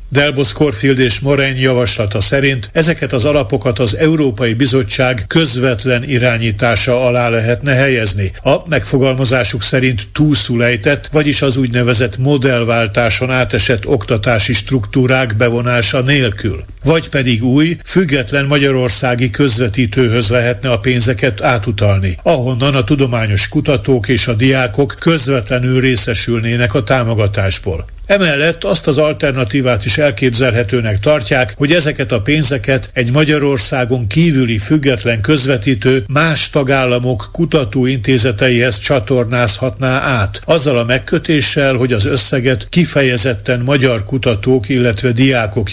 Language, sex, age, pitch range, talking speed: Hungarian, male, 60-79, 120-140 Hz, 110 wpm